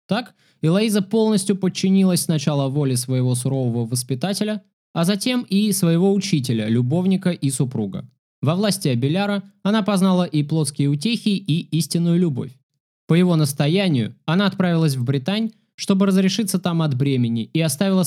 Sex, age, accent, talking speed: male, 20-39, native, 140 wpm